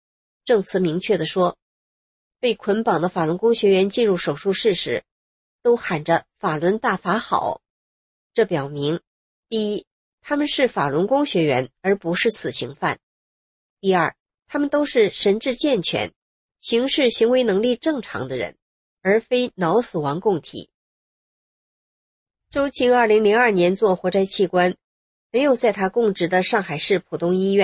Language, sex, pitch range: English, female, 175-235 Hz